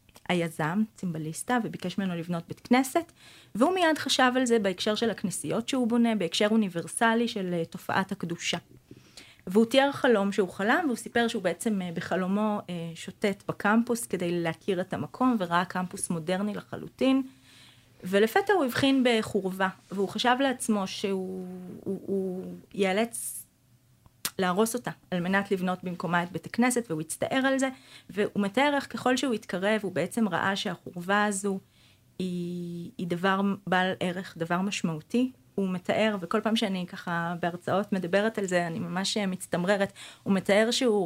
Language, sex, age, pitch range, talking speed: Hebrew, female, 30-49, 175-225 Hz, 145 wpm